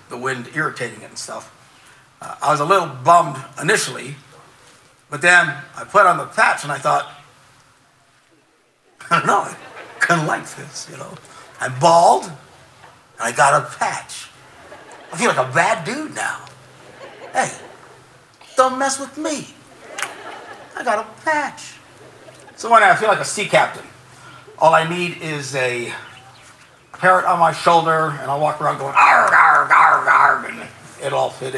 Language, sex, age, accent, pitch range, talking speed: English, male, 60-79, American, 155-210 Hz, 155 wpm